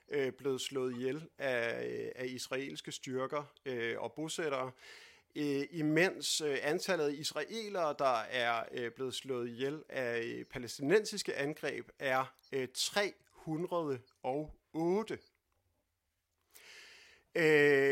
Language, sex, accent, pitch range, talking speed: Danish, male, native, 135-205 Hz, 100 wpm